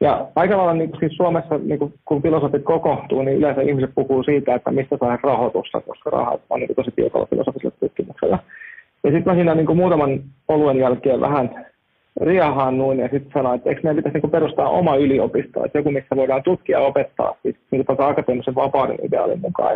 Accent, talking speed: native, 190 wpm